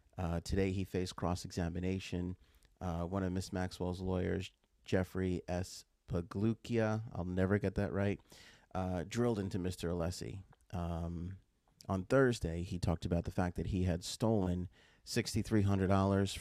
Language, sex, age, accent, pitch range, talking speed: English, male, 30-49, American, 90-100 Hz, 135 wpm